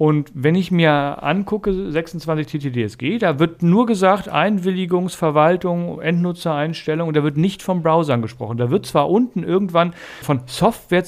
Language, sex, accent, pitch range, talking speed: German, male, German, 145-185 Hz, 145 wpm